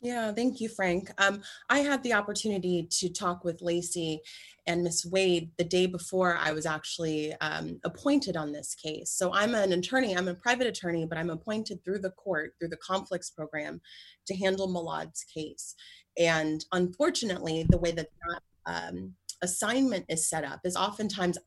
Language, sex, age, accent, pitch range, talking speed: English, female, 30-49, American, 160-200 Hz, 175 wpm